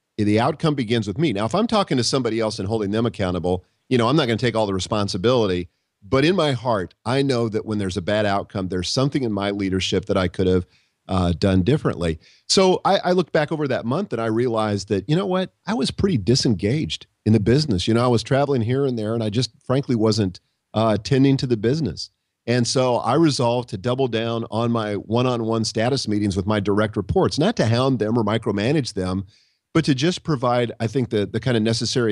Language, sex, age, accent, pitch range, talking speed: English, male, 40-59, American, 105-135 Hz, 230 wpm